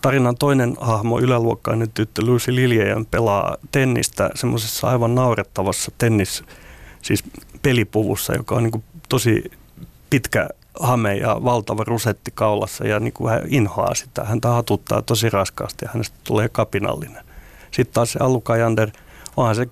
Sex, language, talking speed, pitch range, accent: male, Finnish, 130 wpm, 110-130 Hz, native